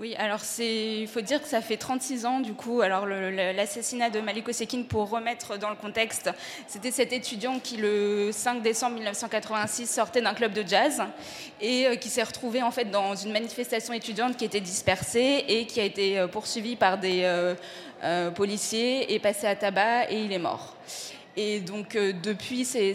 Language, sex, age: French, female, 20-39